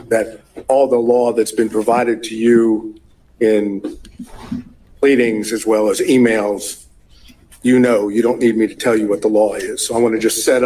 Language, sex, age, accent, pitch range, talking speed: English, male, 50-69, American, 110-130 Hz, 190 wpm